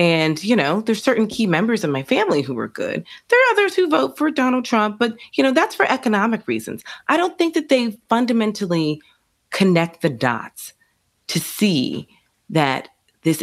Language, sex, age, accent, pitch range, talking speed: English, female, 30-49, American, 140-225 Hz, 185 wpm